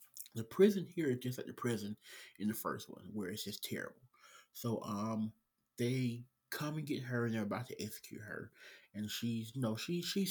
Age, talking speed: 30-49, 210 wpm